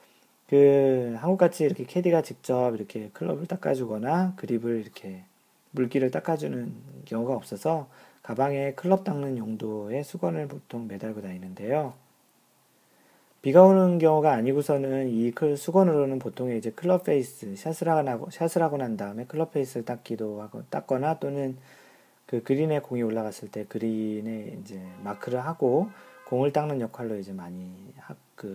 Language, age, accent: Korean, 40-59, native